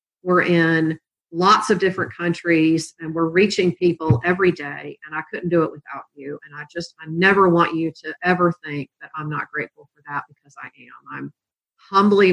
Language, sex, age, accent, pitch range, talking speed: English, female, 40-59, American, 155-195 Hz, 195 wpm